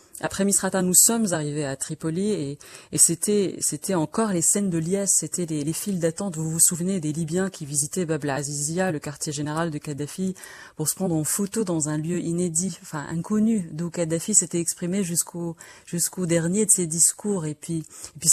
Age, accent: 30-49, French